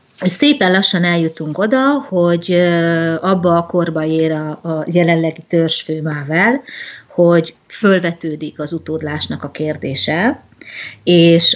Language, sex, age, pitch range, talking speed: Hungarian, female, 30-49, 155-185 Hz, 100 wpm